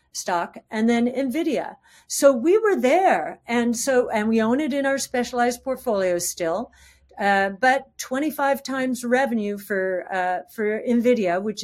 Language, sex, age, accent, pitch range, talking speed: English, female, 50-69, American, 185-240 Hz, 150 wpm